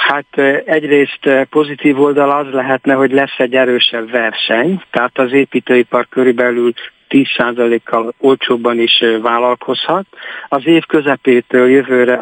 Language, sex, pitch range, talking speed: Hungarian, male, 120-140 Hz, 115 wpm